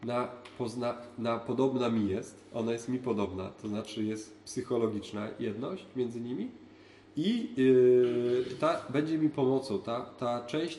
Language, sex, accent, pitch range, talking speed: Polish, male, native, 110-155 Hz, 145 wpm